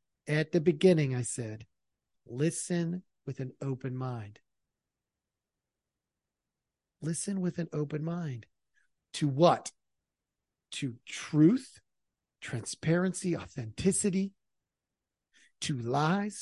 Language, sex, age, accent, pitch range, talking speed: English, male, 40-59, American, 125-175 Hz, 85 wpm